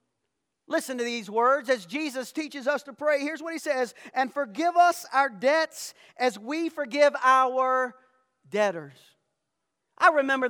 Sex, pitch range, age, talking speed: male, 180-265 Hz, 40-59, 150 wpm